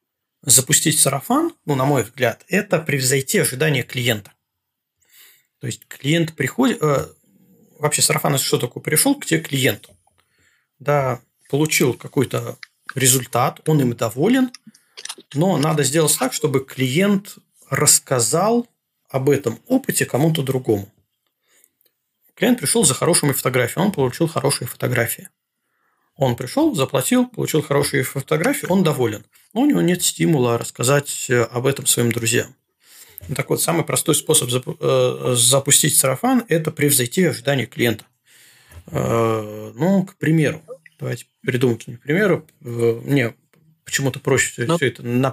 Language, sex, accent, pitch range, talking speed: Russian, male, native, 125-165 Hz, 125 wpm